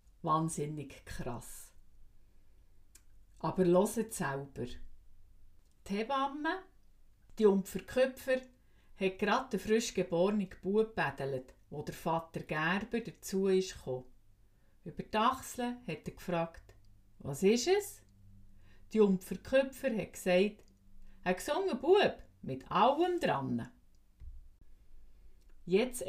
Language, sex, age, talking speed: German, female, 50-69, 95 wpm